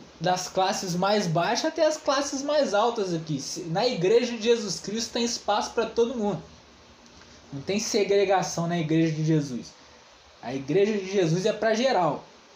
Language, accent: Portuguese, Brazilian